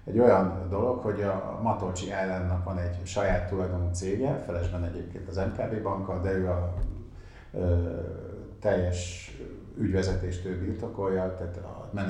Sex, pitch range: male, 90-100 Hz